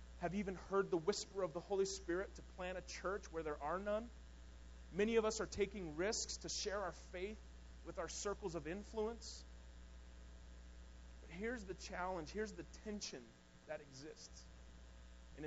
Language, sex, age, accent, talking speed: English, male, 30-49, American, 165 wpm